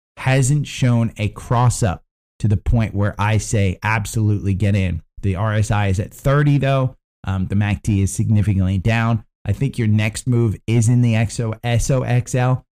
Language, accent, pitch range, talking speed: English, American, 95-120 Hz, 160 wpm